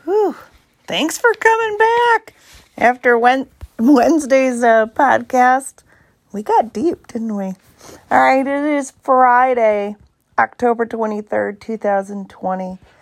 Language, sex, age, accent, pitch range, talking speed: English, female, 40-59, American, 200-255 Hz, 95 wpm